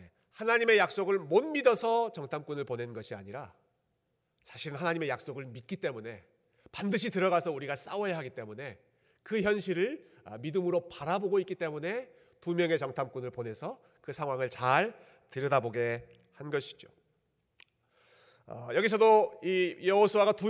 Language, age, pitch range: Korean, 40-59, 135-195 Hz